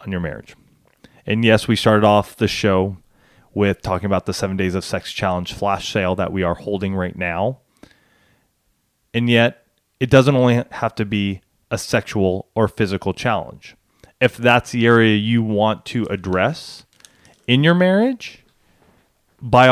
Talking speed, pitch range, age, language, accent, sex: 160 wpm, 105-145 Hz, 30-49, English, American, male